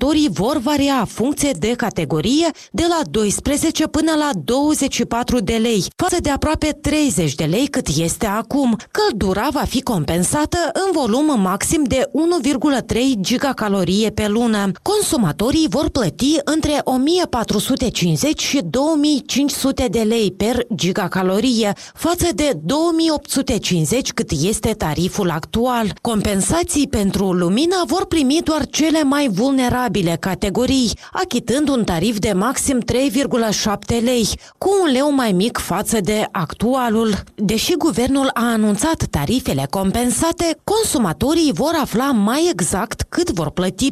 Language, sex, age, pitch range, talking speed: Romanian, female, 30-49, 210-295 Hz, 125 wpm